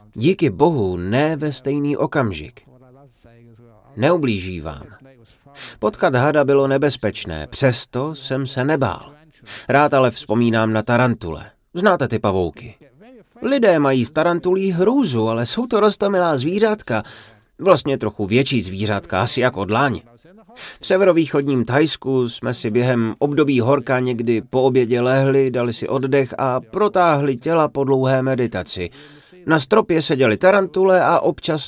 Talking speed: 130 wpm